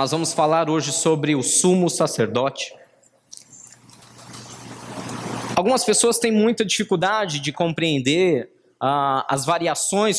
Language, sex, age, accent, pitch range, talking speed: Portuguese, male, 20-39, Brazilian, 150-210 Hz, 105 wpm